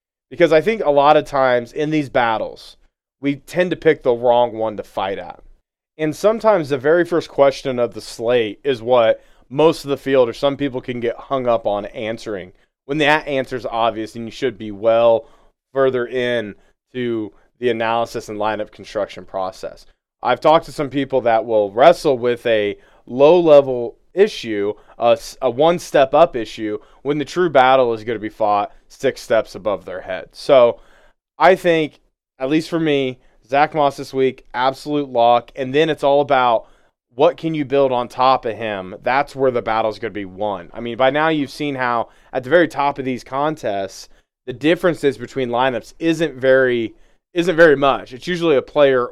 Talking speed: 190 wpm